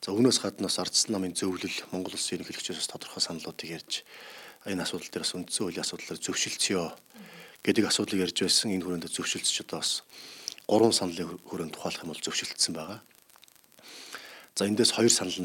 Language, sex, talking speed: English, male, 160 wpm